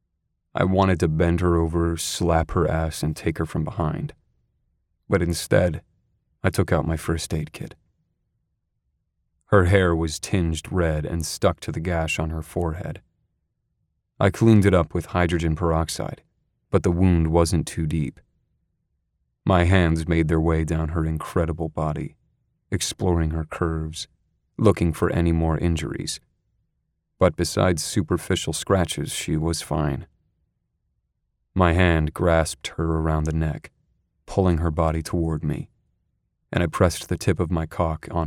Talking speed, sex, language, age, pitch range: 145 wpm, male, English, 30-49, 80-90 Hz